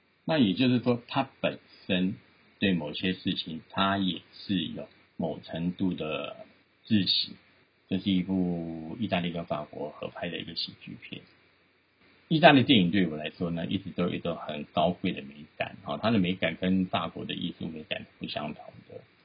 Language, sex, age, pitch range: Chinese, male, 50-69, 85-95 Hz